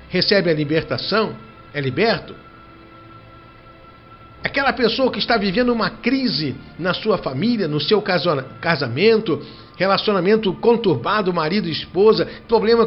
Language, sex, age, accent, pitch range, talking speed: Portuguese, male, 60-79, Brazilian, 120-165 Hz, 110 wpm